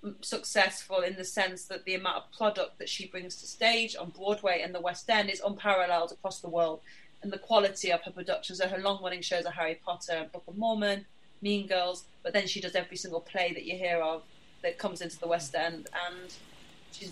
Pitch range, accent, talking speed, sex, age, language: 180-205 Hz, British, 220 wpm, female, 30-49, English